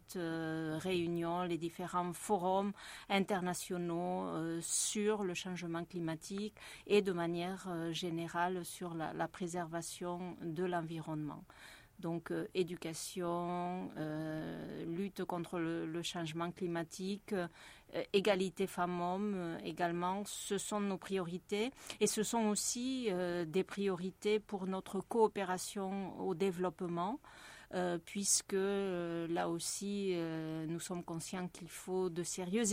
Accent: French